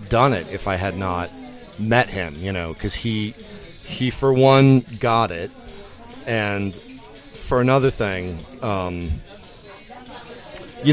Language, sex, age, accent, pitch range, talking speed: English, male, 30-49, American, 105-135 Hz, 125 wpm